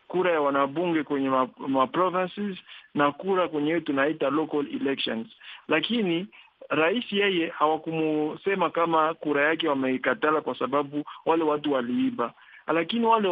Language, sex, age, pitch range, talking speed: Swahili, male, 50-69, 145-185 Hz, 120 wpm